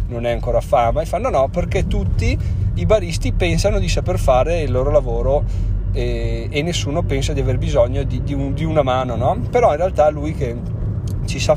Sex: male